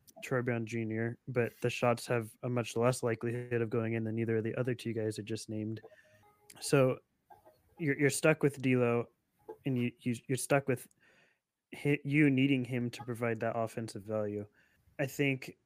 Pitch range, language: 115-130 Hz, English